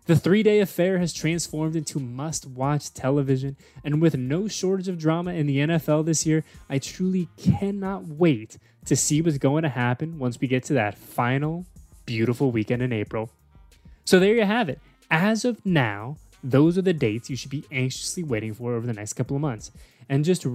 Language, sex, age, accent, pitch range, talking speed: English, male, 20-39, American, 125-160 Hz, 190 wpm